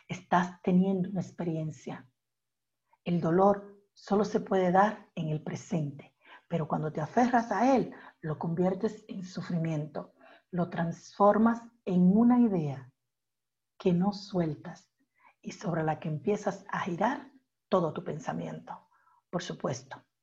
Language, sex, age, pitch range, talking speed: German, female, 50-69, 175-230 Hz, 130 wpm